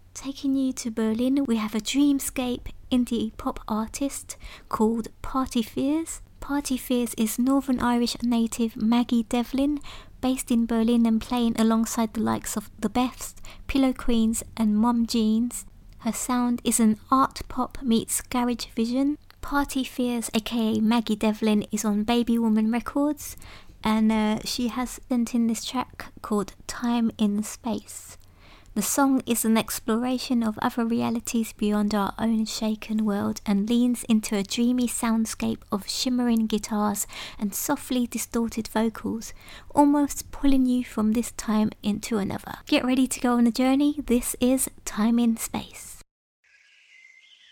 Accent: British